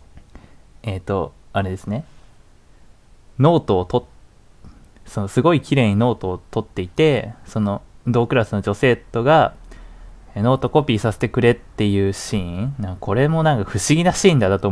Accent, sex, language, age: native, male, Japanese, 20-39